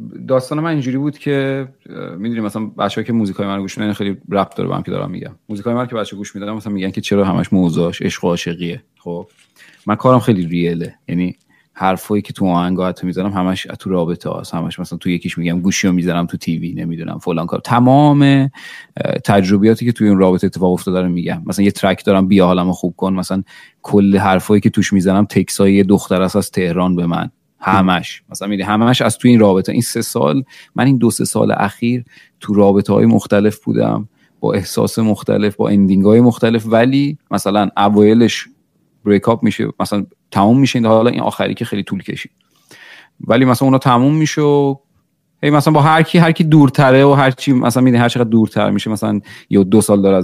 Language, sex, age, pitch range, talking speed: Persian, male, 30-49, 95-120 Hz, 210 wpm